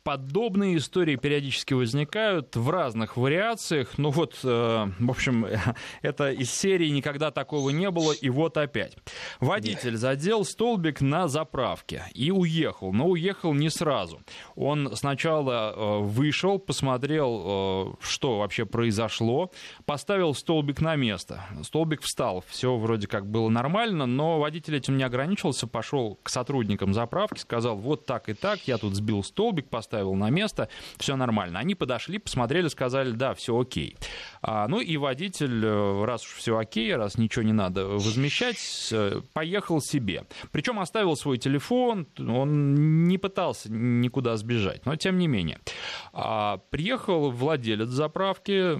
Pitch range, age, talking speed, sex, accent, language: 115-160 Hz, 20-39, 140 wpm, male, native, Russian